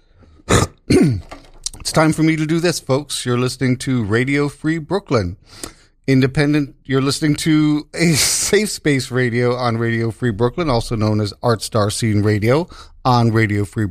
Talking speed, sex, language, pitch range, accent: 155 wpm, male, English, 115-155 Hz, American